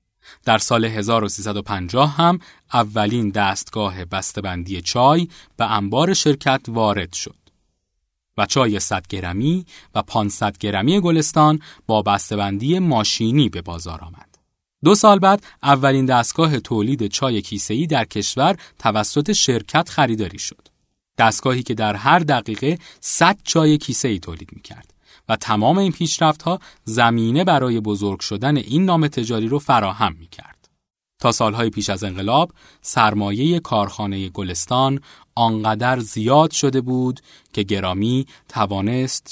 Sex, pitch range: male, 100-140 Hz